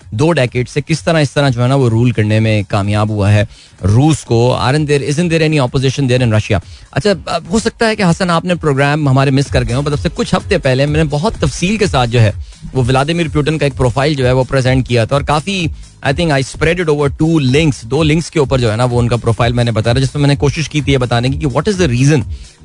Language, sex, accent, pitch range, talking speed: Hindi, male, native, 125-160 Hz, 260 wpm